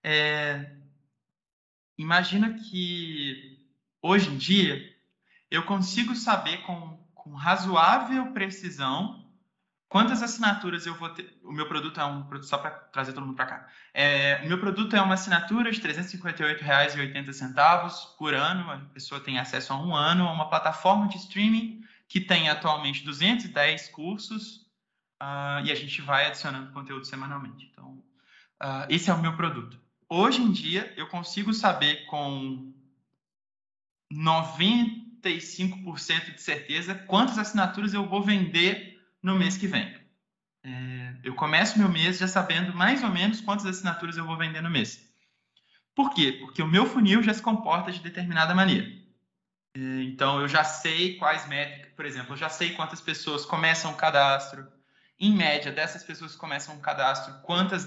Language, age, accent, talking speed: Portuguese, 20-39, Brazilian, 150 wpm